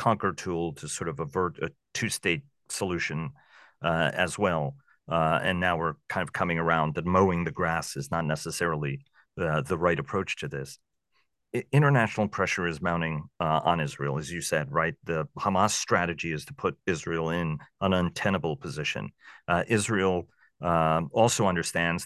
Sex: male